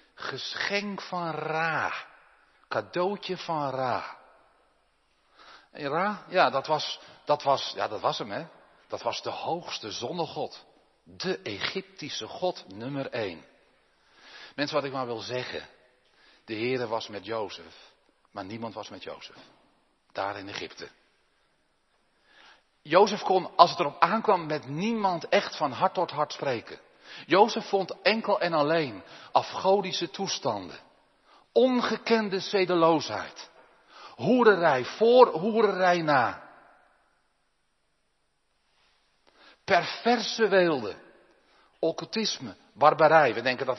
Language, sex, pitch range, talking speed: Dutch, male, 140-200 Hz, 110 wpm